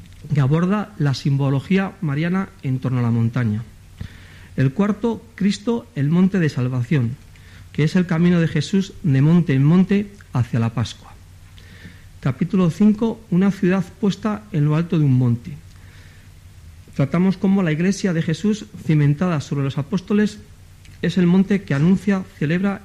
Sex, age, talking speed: male, 50-69, 150 wpm